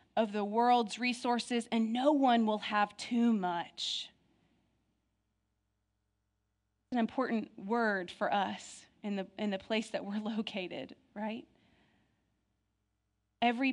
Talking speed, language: 120 wpm, English